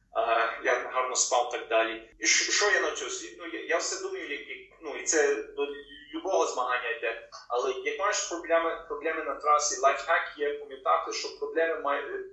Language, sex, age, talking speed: Ukrainian, male, 30-49, 180 wpm